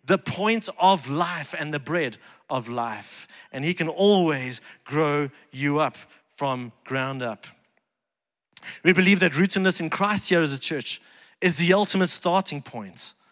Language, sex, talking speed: English, male, 155 wpm